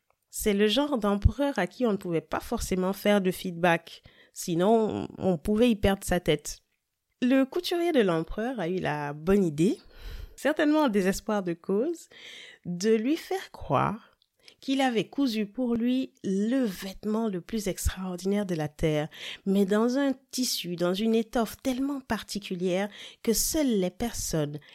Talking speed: 160 wpm